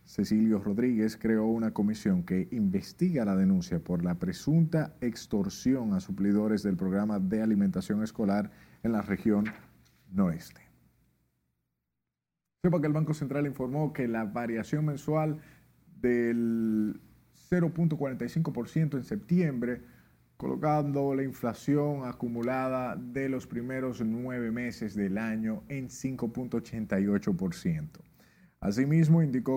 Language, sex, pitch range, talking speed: Spanish, male, 110-150 Hz, 105 wpm